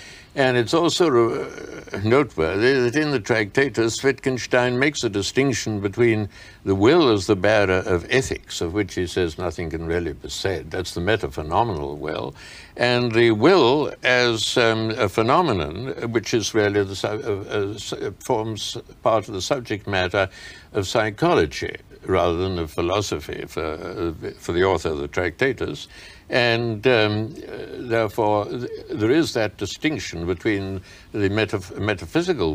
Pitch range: 95-120 Hz